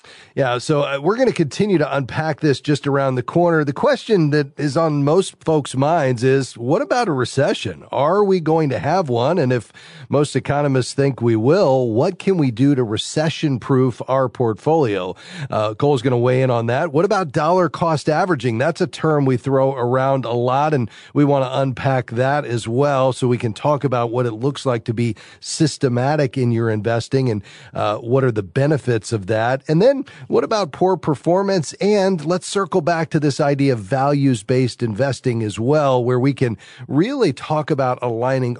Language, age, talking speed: English, 40-59, 195 wpm